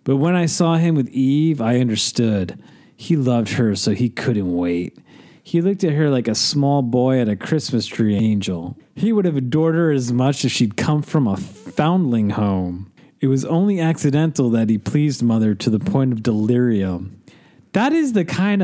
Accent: American